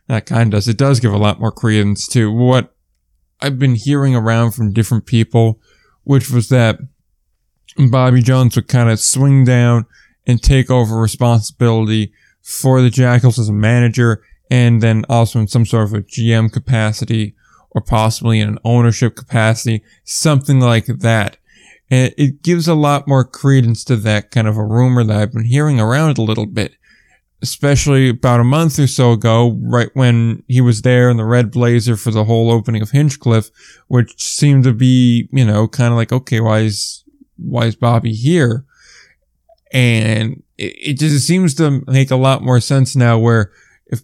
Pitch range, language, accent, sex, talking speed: 115-130 Hz, English, American, male, 180 wpm